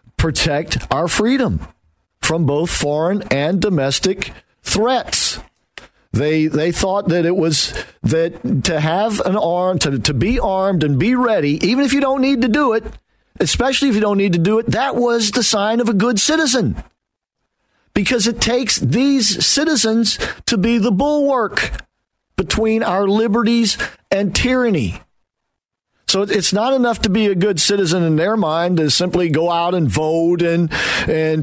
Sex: male